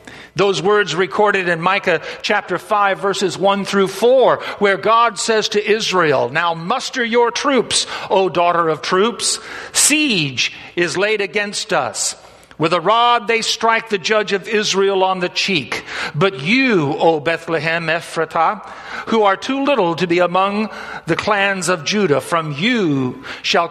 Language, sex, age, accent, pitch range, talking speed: English, male, 50-69, American, 175-215 Hz, 150 wpm